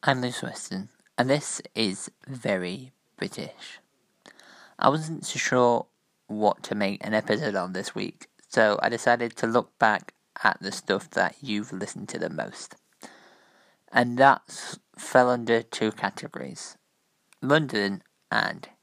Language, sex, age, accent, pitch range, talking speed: English, male, 20-39, British, 110-135 Hz, 135 wpm